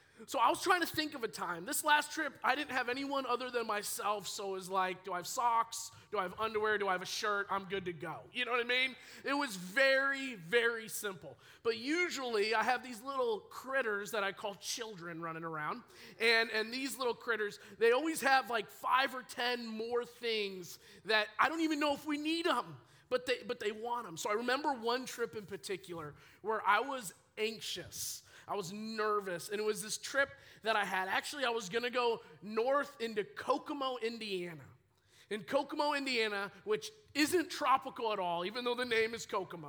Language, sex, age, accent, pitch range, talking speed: English, male, 20-39, American, 195-260 Hz, 210 wpm